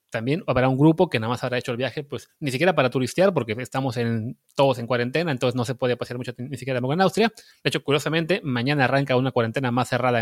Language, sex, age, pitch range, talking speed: Spanish, male, 30-49, 120-145 Hz, 240 wpm